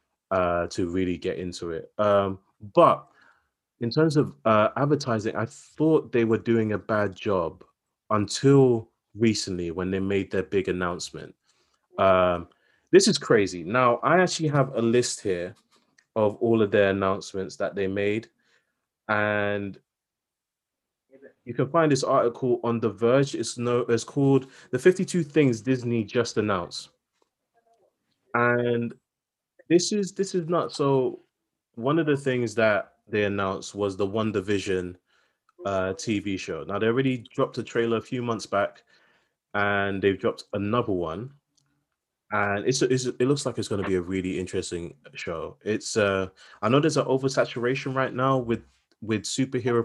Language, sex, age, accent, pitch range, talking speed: English, male, 20-39, British, 100-130 Hz, 155 wpm